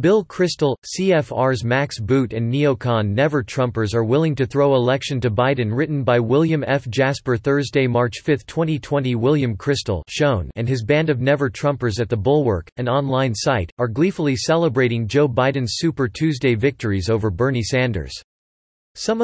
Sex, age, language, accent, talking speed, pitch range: male, 40-59, English, American, 160 wpm, 115-145 Hz